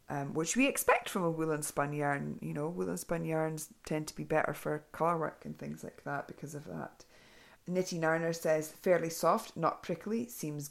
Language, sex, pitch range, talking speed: English, female, 150-185 Hz, 215 wpm